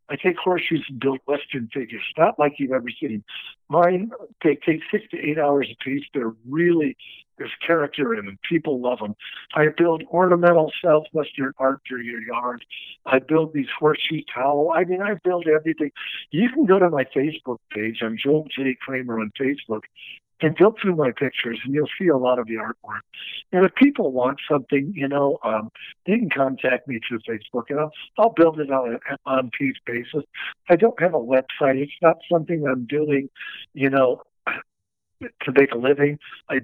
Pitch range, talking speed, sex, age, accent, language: 125-160 Hz, 190 wpm, male, 60-79, American, English